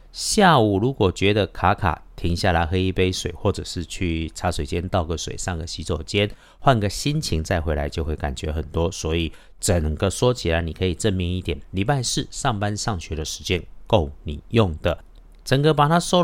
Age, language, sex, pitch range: 50-69, Chinese, male, 85-115 Hz